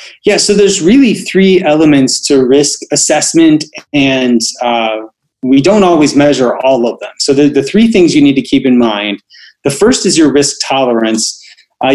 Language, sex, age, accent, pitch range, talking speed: English, male, 30-49, American, 125-155 Hz, 180 wpm